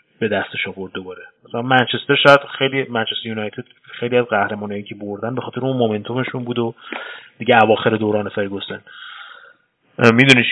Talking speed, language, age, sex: 145 wpm, Persian, 30-49, male